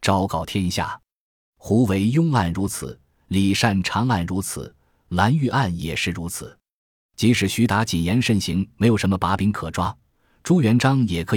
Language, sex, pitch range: Chinese, male, 85-115 Hz